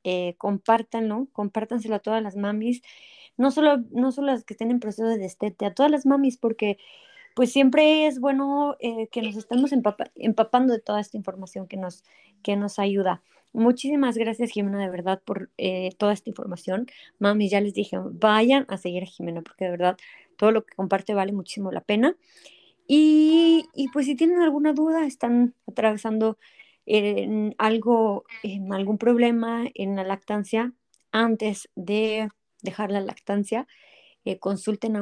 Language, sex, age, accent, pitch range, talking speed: Spanish, female, 20-39, Mexican, 200-255 Hz, 165 wpm